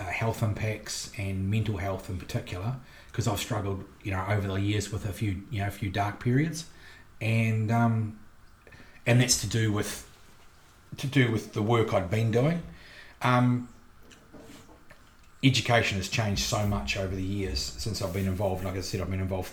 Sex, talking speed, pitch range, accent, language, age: male, 180 wpm, 95-115 Hz, Australian, English, 30-49